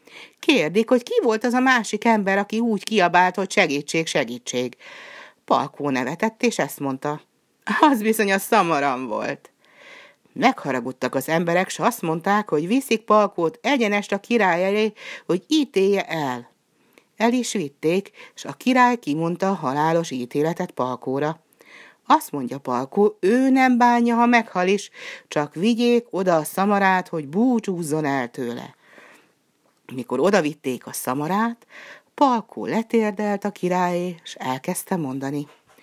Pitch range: 150-220 Hz